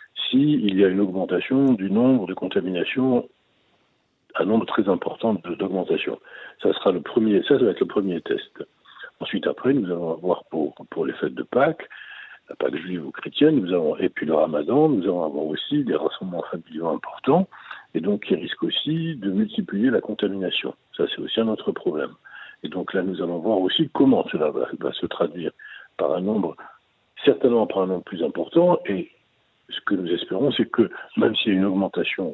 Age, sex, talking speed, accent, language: 60-79, male, 190 wpm, French, French